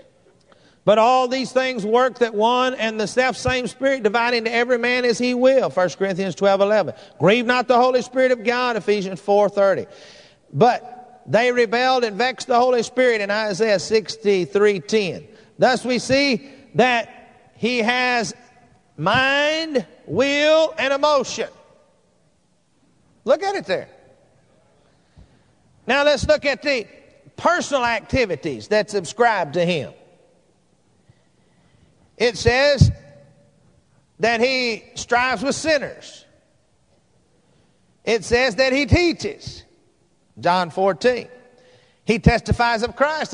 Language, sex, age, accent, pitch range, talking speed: English, male, 50-69, American, 205-255 Hz, 125 wpm